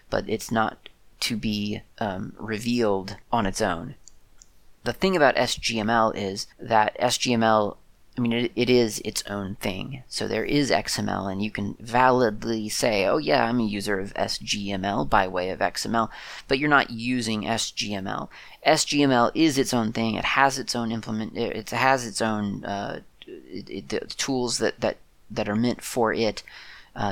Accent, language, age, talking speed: American, English, 30-49, 175 wpm